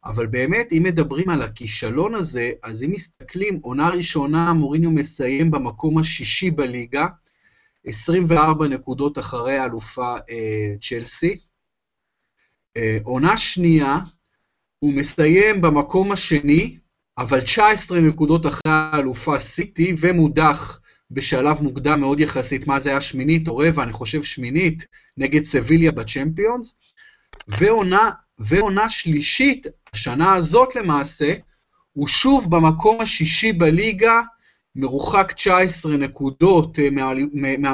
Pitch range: 135-180 Hz